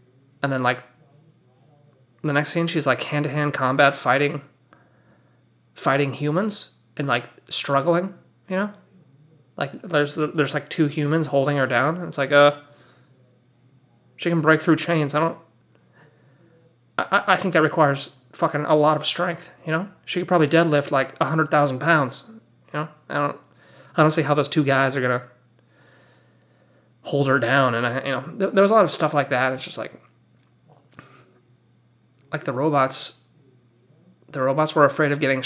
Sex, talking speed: male, 165 wpm